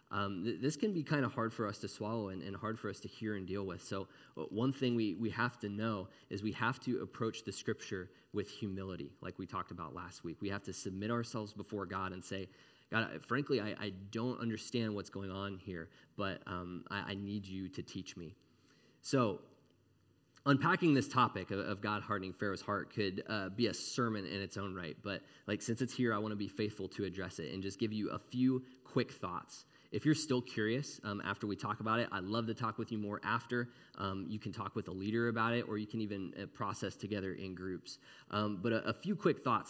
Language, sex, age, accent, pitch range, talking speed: English, male, 20-39, American, 95-115 Hz, 235 wpm